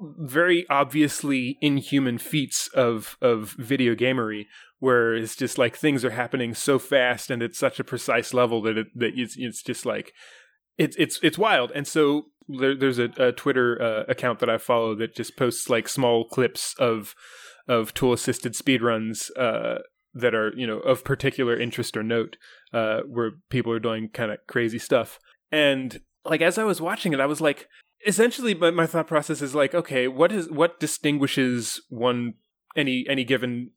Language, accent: English, American